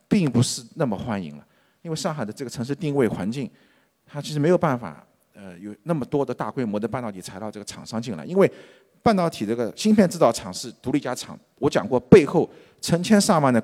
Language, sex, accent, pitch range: Chinese, male, native, 125-180 Hz